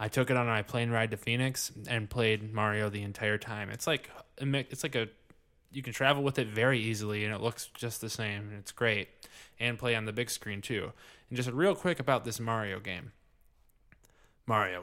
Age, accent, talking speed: 20-39, American, 210 wpm